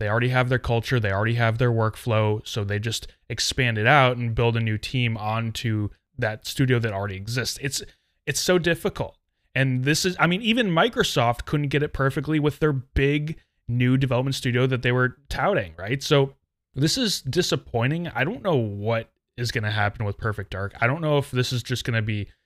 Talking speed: 210 wpm